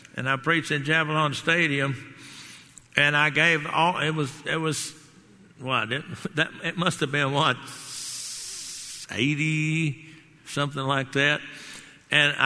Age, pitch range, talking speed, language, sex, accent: 60-79, 145-180 Hz, 125 wpm, English, male, American